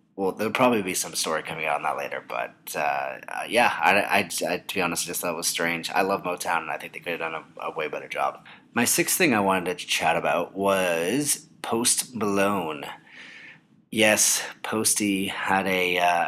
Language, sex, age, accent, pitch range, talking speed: English, male, 30-49, American, 85-100 Hz, 210 wpm